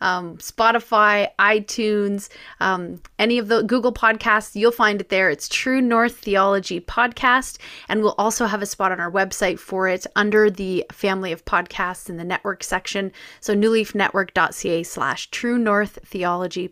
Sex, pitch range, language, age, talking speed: female, 190-230 Hz, English, 30-49, 155 wpm